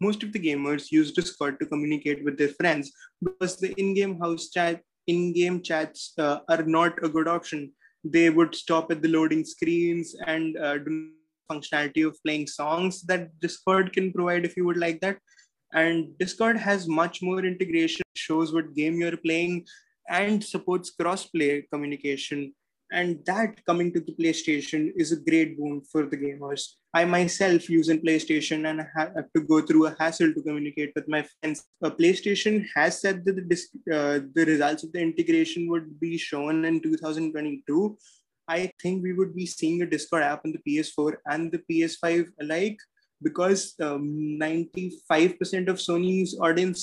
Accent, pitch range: Indian, 155-185 Hz